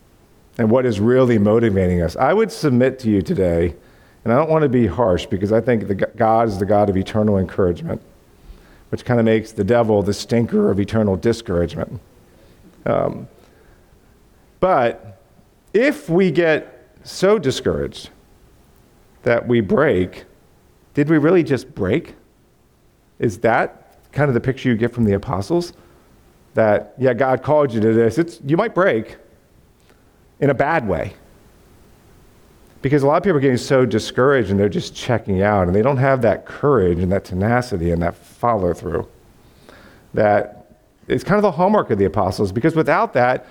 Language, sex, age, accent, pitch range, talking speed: English, male, 50-69, American, 105-140 Hz, 165 wpm